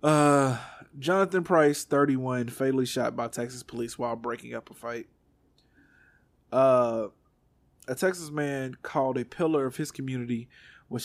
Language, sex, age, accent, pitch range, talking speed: English, male, 20-39, American, 125-140 Hz, 135 wpm